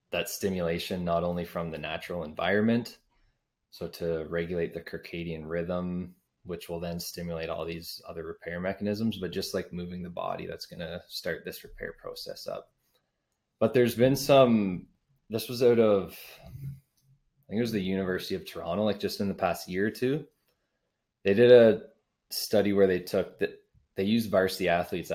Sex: male